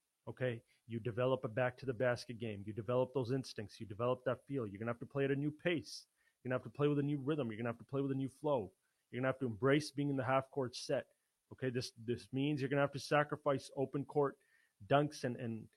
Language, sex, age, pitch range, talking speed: English, male, 30-49, 115-140 Hz, 280 wpm